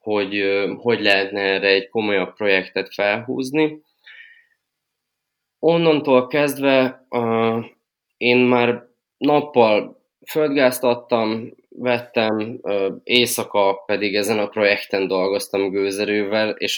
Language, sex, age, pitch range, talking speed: Hungarian, male, 20-39, 95-120 Hz, 85 wpm